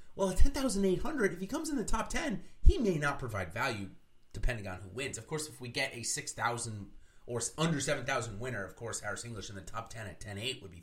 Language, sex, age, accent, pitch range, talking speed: English, male, 30-49, American, 100-155 Hz, 240 wpm